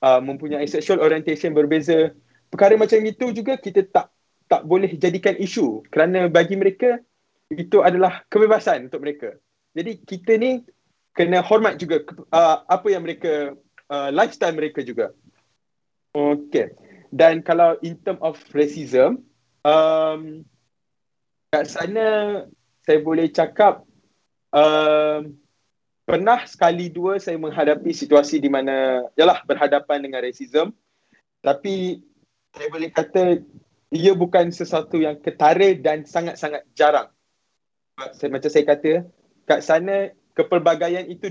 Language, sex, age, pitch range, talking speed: Malay, male, 20-39, 145-185 Hz, 120 wpm